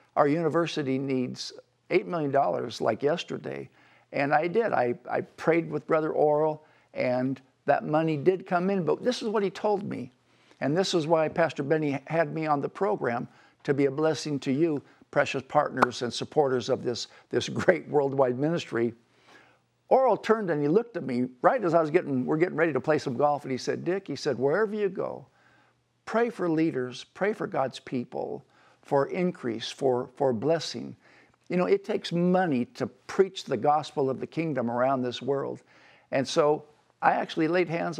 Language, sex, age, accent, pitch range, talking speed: English, male, 60-79, American, 130-170 Hz, 185 wpm